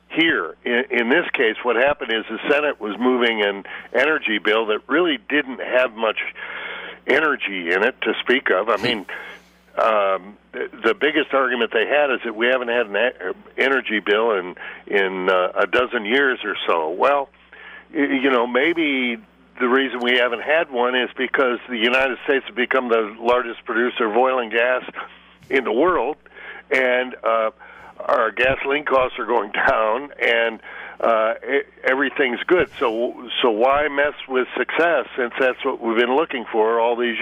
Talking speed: 170 wpm